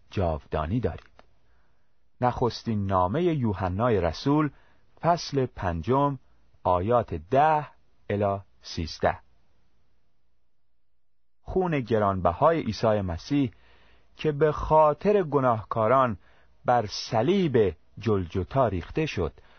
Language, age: Persian, 40-59